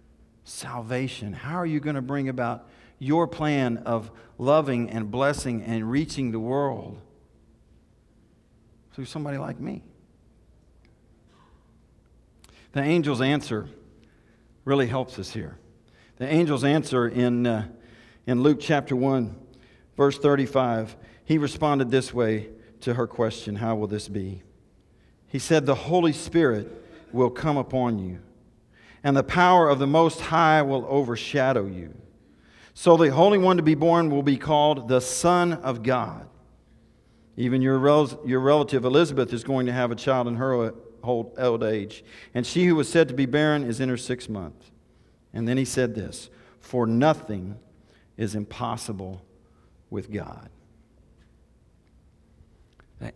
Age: 50-69